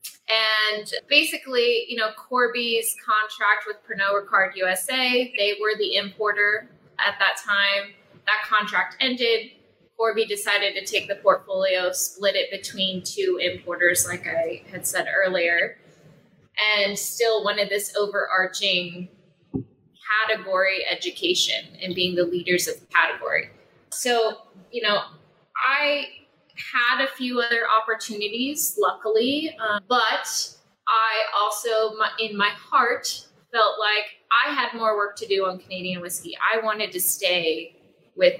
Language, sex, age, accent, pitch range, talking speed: English, female, 20-39, American, 185-230 Hz, 130 wpm